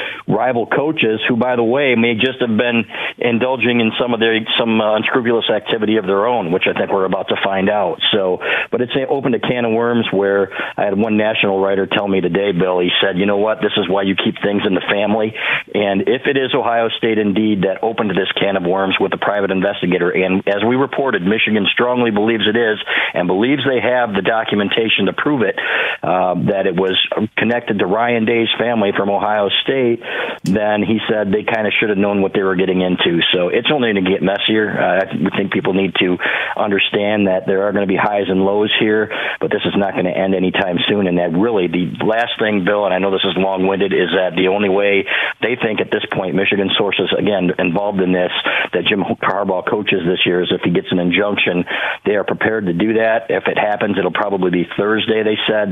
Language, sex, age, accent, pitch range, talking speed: English, male, 50-69, American, 95-110 Hz, 225 wpm